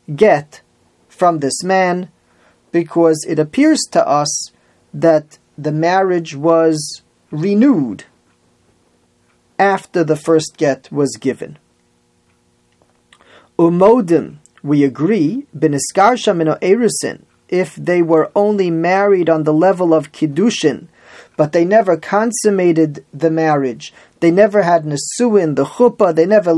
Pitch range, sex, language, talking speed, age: 150-195 Hz, male, English, 115 wpm, 30-49